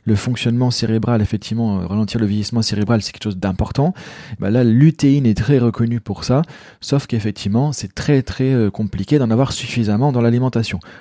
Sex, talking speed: male, 165 wpm